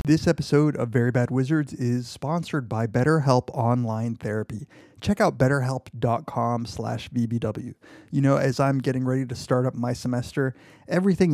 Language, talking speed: English, 155 wpm